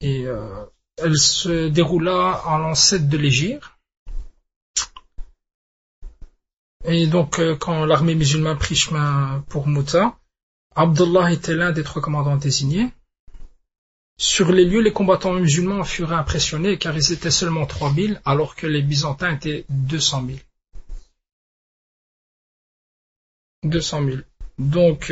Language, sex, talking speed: French, male, 120 wpm